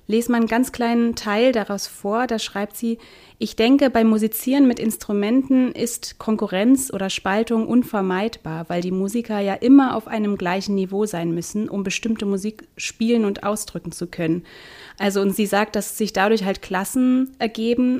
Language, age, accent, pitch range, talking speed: German, 30-49, German, 195-235 Hz, 170 wpm